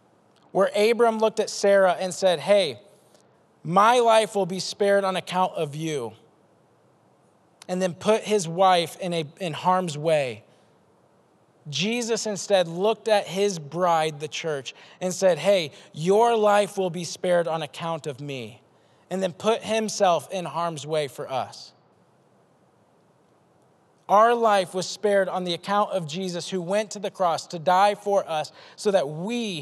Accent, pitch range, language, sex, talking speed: American, 170-210 Hz, English, male, 155 wpm